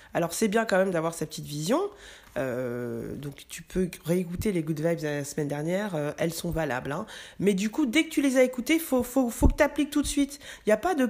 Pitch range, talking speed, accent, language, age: 165-240 Hz, 270 wpm, French, French, 20-39